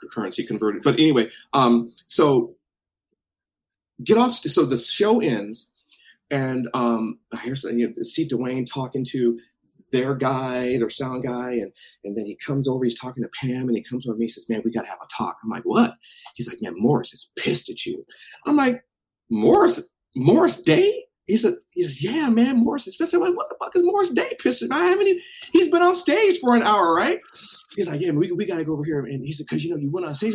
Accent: American